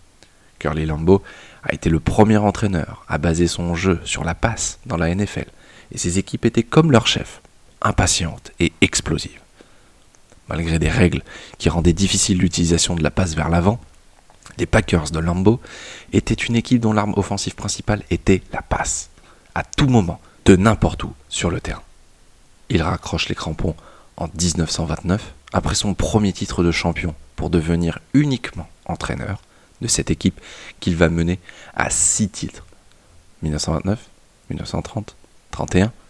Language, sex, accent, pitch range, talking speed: French, male, French, 85-100 Hz, 150 wpm